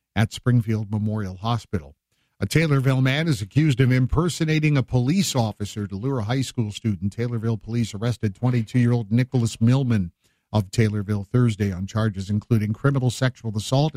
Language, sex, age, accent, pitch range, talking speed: English, male, 50-69, American, 105-135 Hz, 150 wpm